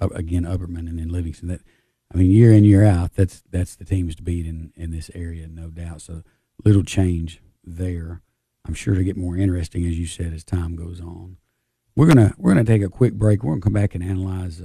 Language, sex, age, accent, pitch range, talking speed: English, male, 40-59, American, 90-105 Hz, 230 wpm